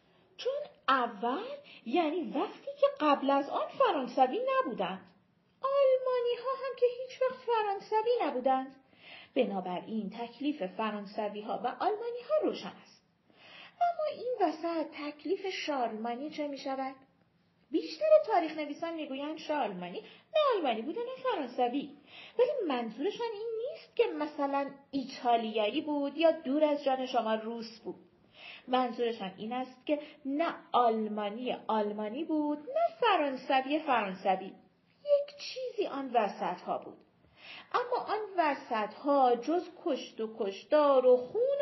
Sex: female